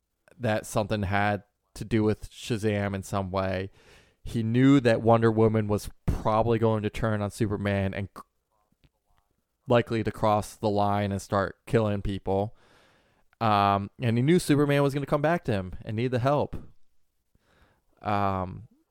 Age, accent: 20-39, American